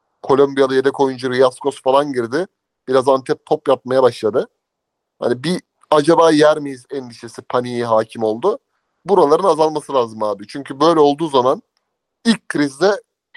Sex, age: male, 30-49